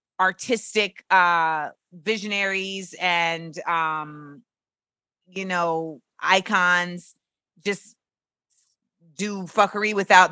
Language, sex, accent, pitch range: English, female, American, 175-230 Hz